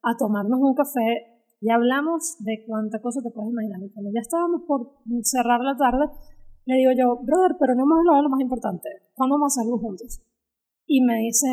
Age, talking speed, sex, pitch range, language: 30-49, 210 wpm, female, 225-290 Hz, Spanish